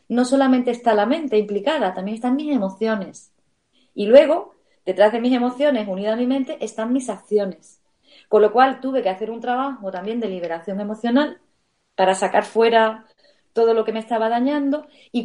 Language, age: Spanish, 30-49